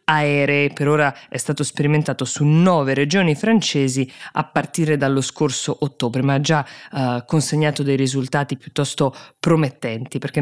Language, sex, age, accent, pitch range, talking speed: Italian, female, 20-39, native, 135-170 Hz, 145 wpm